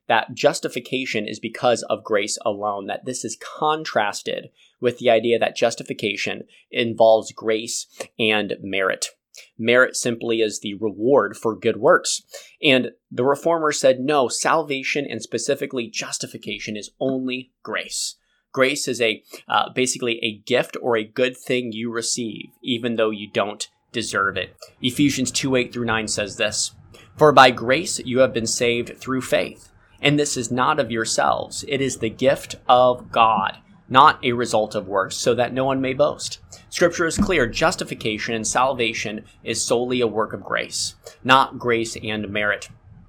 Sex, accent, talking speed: male, American, 160 wpm